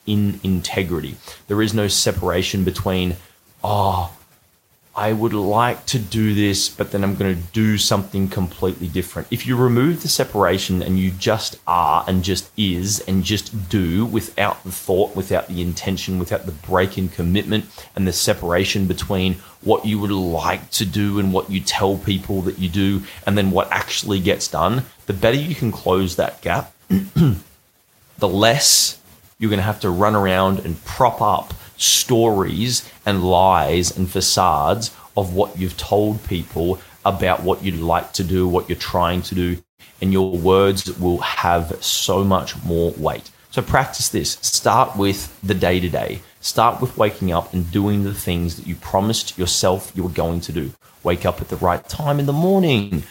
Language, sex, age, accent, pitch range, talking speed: English, male, 30-49, Australian, 90-105 Hz, 175 wpm